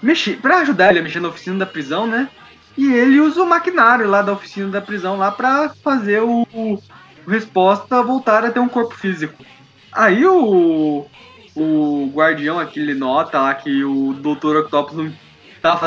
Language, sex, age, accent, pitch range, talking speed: Portuguese, male, 20-39, Brazilian, 155-220 Hz, 175 wpm